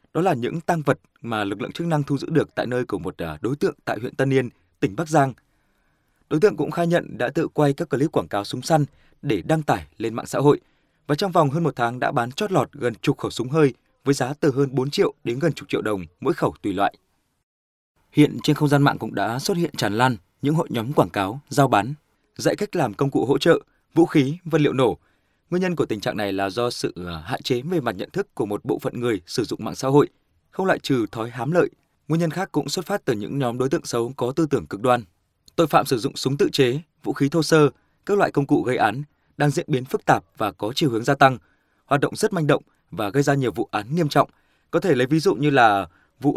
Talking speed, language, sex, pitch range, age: 265 wpm, Vietnamese, male, 120-155 Hz, 20-39